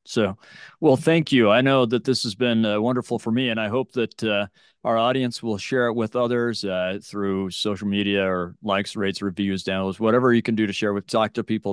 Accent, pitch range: American, 105-125 Hz